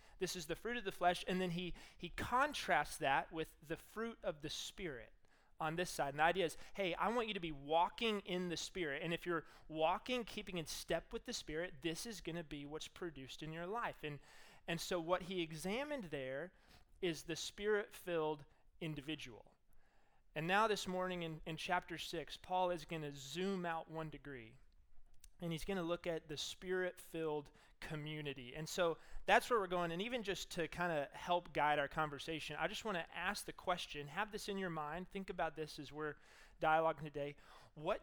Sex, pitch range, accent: male, 155-185 Hz, American